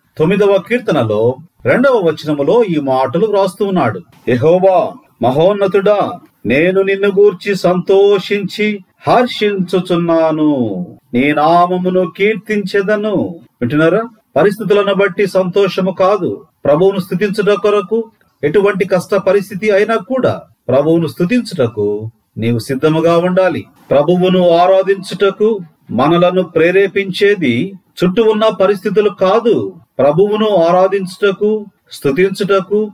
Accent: native